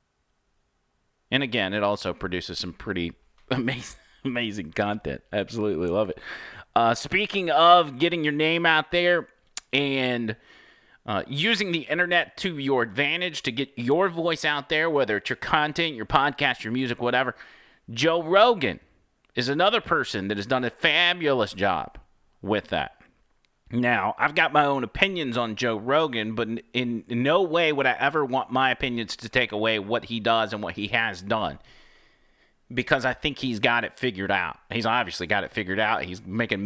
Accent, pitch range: American, 110-145 Hz